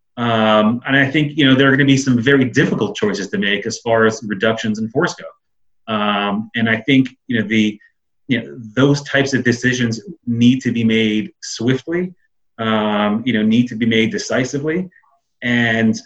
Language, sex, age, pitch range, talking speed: English, male, 30-49, 110-130 Hz, 190 wpm